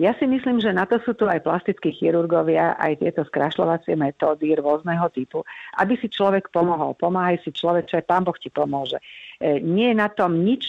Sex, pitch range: female, 155-180 Hz